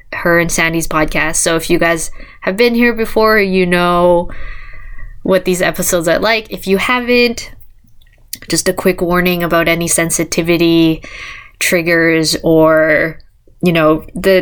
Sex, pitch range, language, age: female, 165-190 Hz, English, 20-39